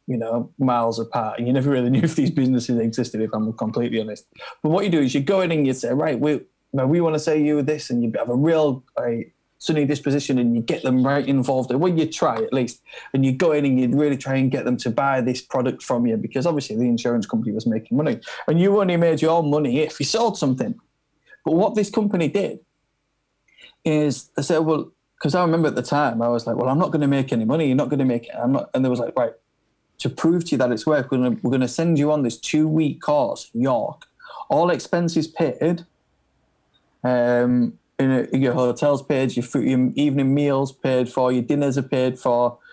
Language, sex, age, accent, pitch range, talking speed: English, male, 20-39, British, 125-165 Hz, 245 wpm